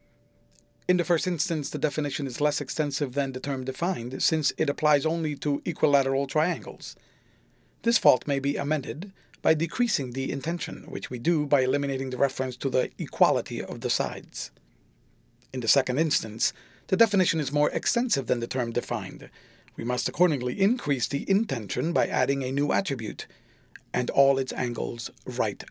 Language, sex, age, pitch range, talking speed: English, male, 40-59, 130-165 Hz, 165 wpm